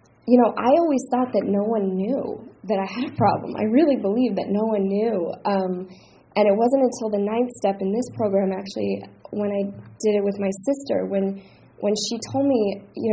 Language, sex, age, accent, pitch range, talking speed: English, female, 10-29, American, 195-240 Hz, 210 wpm